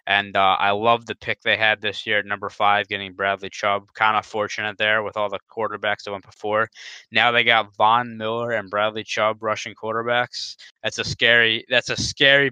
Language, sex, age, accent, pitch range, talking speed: English, male, 20-39, American, 100-120 Hz, 205 wpm